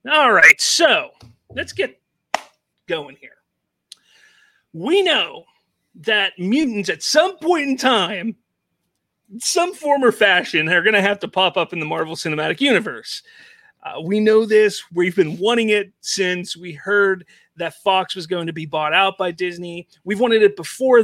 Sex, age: male, 30-49